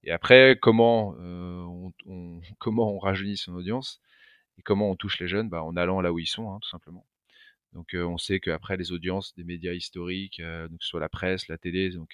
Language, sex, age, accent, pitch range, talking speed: French, male, 30-49, French, 85-105 Hz, 225 wpm